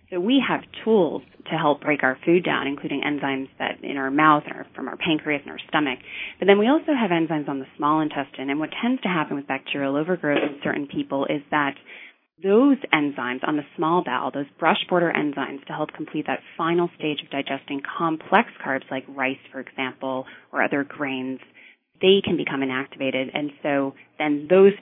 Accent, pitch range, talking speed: American, 140-180 Hz, 195 wpm